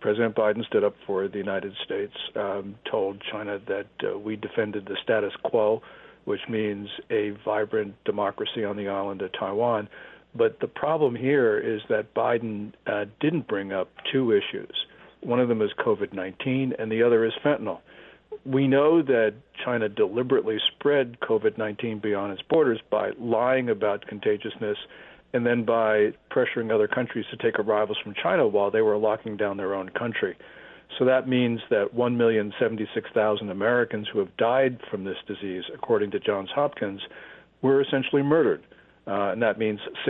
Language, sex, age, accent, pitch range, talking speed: English, male, 60-79, American, 105-130 Hz, 160 wpm